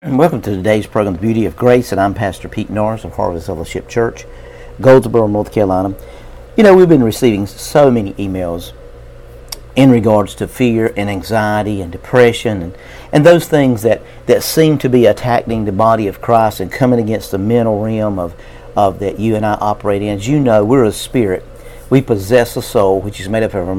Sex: male